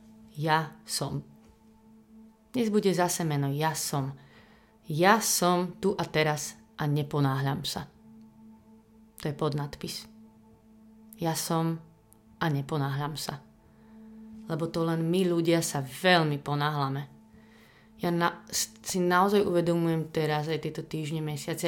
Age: 30-49